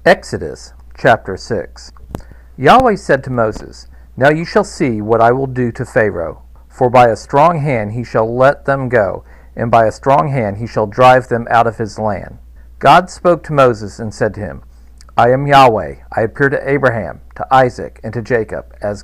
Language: English